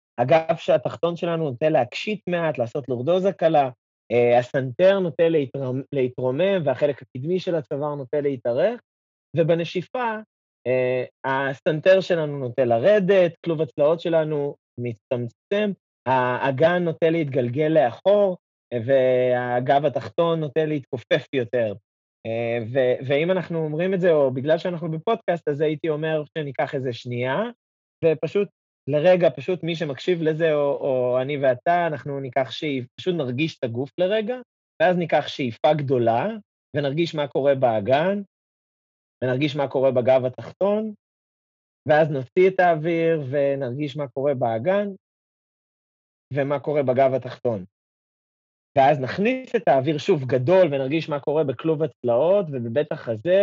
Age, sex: 30-49, male